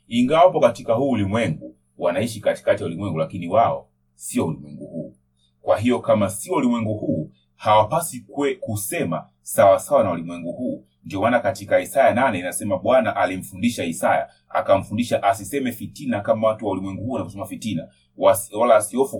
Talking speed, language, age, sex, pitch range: 155 wpm, Swahili, 30-49, male, 90-140 Hz